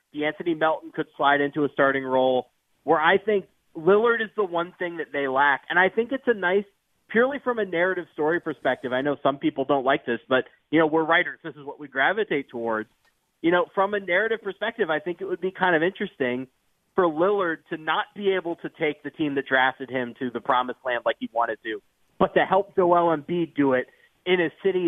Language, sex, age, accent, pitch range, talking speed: English, male, 30-49, American, 135-180 Hz, 230 wpm